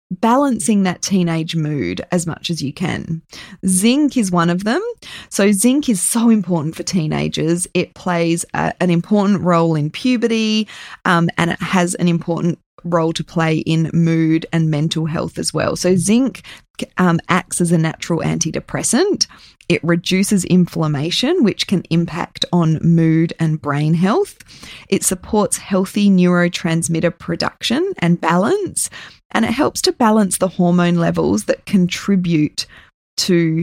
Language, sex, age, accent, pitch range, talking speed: English, female, 20-39, Australian, 165-195 Hz, 145 wpm